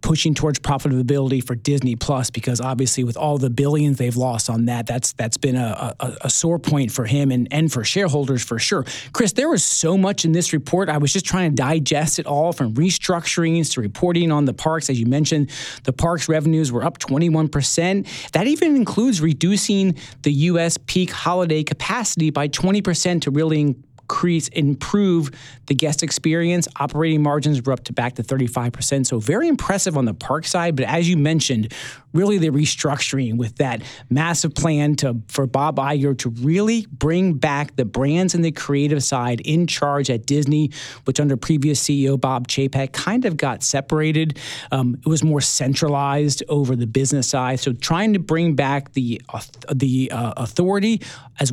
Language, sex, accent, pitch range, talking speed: English, male, American, 130-165 Hz, 185 wpm